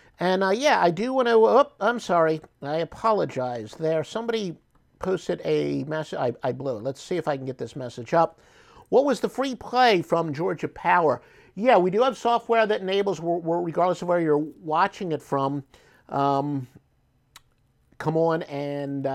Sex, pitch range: male, 145-205 Hz